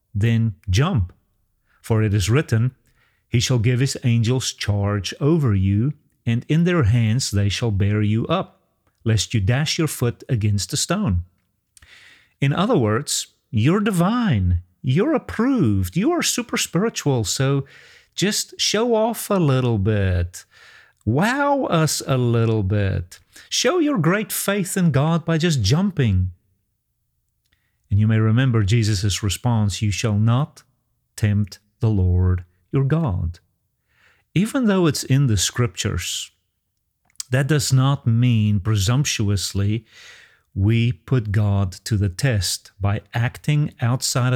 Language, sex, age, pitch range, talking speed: English, male, 40-59, 100-135 Hz, 130 wpm